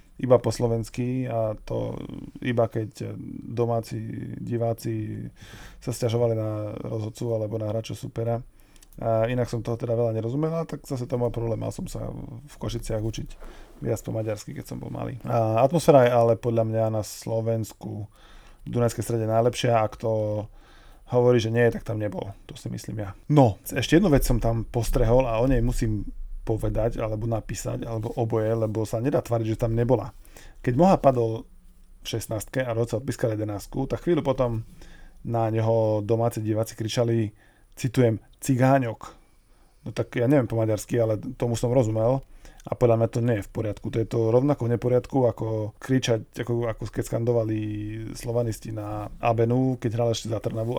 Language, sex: Slovak, male